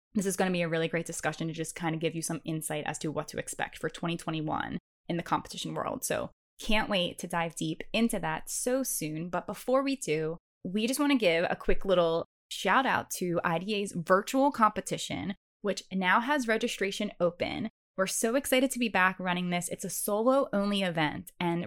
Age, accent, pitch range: 20-39, American, 170-220 Hz